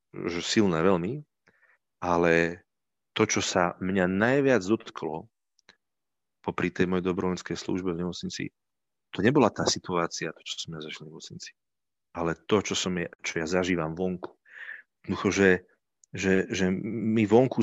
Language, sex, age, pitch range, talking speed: Slovak, male, 40-59, 90-110 Hz, 145 wpm